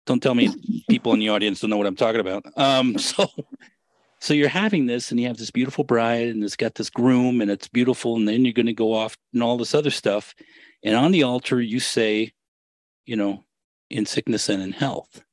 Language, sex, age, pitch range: English, male, 40-59, 115-160 Hz